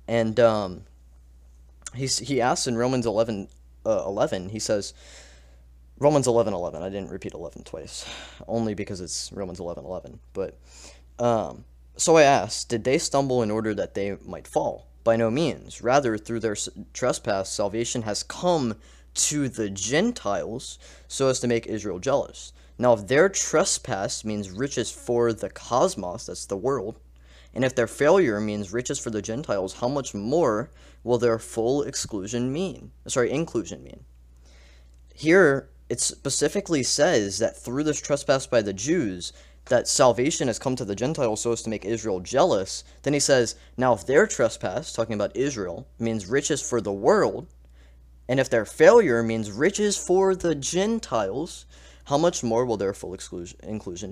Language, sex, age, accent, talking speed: English, male, 20-39, American, 160 wpm